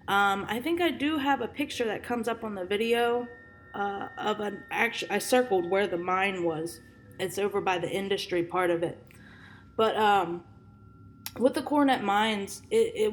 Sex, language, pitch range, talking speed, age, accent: female, English, 190-230 Hz, 185 wpm, 20-39, American